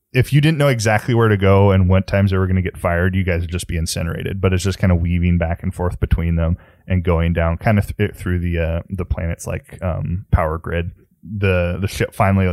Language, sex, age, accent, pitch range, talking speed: English, male, 20-39, American, 85-100 Hz, 255 wpm